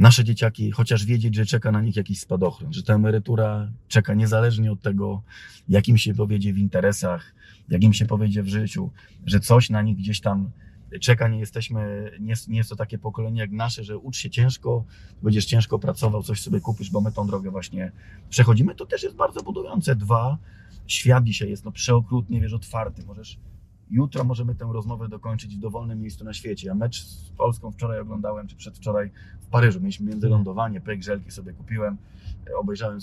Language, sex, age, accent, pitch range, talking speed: Polish, male, 30-49, native, 100-115 Hz, 180 wpm